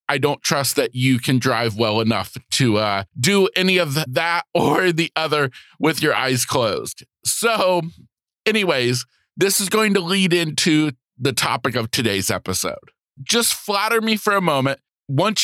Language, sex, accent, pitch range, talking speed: English, male, American, 130-180 Hz, 165 wpm